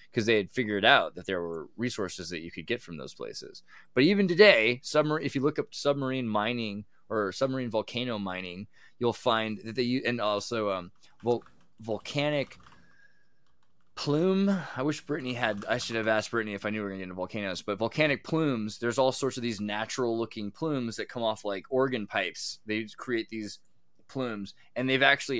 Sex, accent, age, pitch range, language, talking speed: male, American, 20-39, 105-130 Hz, English, 190 wpm